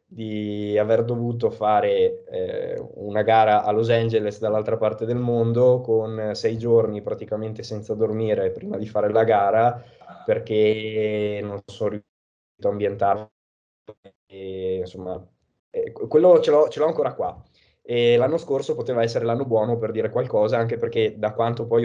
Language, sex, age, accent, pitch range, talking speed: Italian, male, 20-39, native, 105-120 Hz, 155 wpm